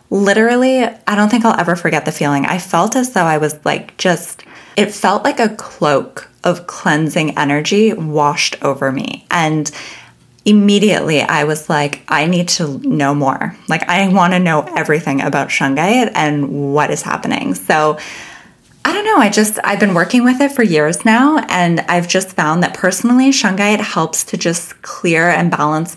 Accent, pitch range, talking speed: American, 150-215 Hz, 180 wpm